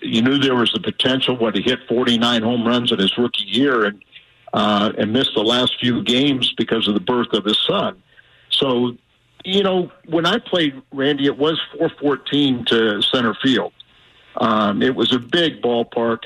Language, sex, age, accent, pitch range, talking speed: English, male, 50-69, American, 115-140 Hz, 190 wpm